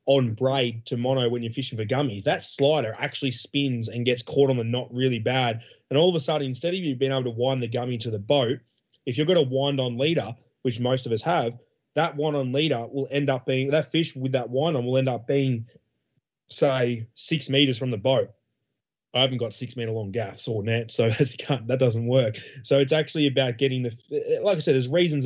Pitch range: 125-160 Hz